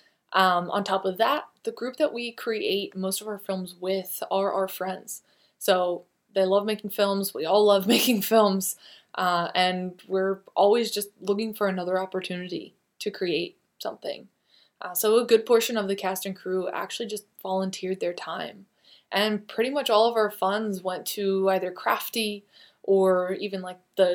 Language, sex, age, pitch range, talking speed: English, female, 20-39, 185-215 Hz, 175 wpm